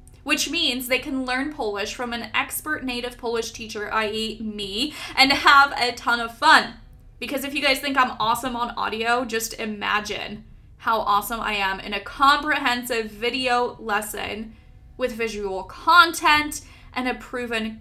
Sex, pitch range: female, 220-285 Hz